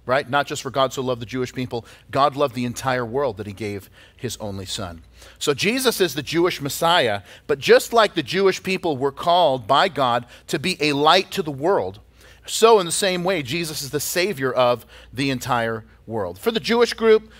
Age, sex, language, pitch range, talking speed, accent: 40-59, male, English, 120-155 Hz, 210 wpm, American